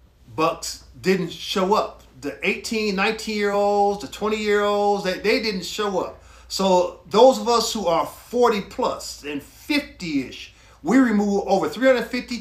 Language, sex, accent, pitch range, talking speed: English, male, American, 170-225 Hz, 155 wpm